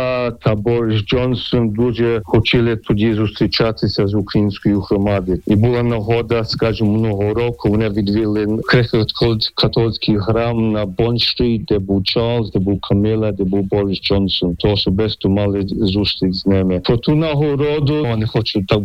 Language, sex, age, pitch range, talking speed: Ukrainian, male, 50-69, 100-120 Hz, 145 wpm